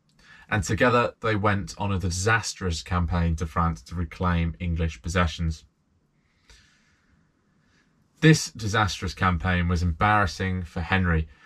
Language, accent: English, British